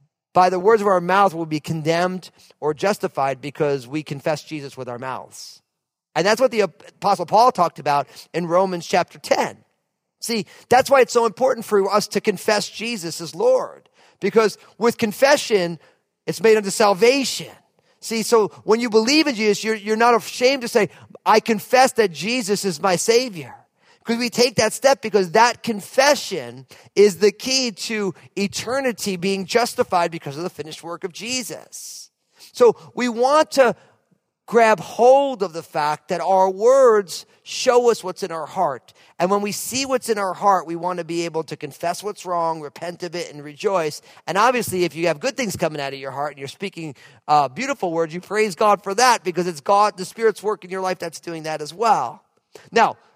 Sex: male